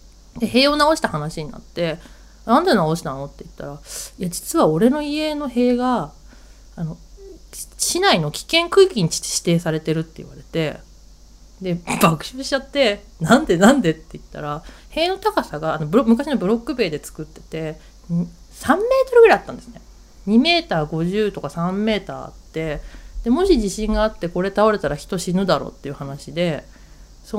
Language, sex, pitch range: Japanese, female, 160-245 Hz